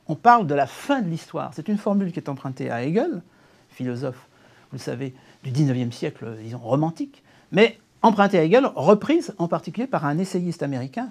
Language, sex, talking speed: French, male, 190 wpm